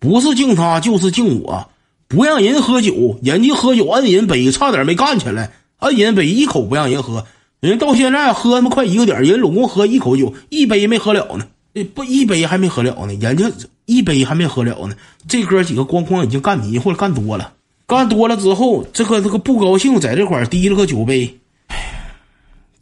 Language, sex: Chinese, male